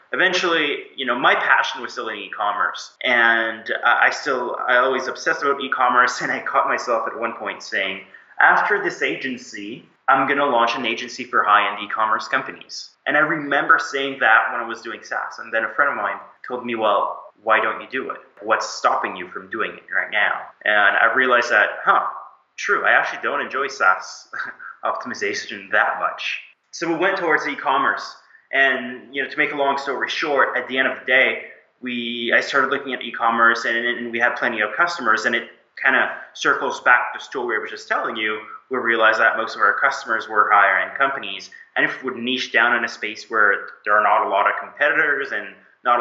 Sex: male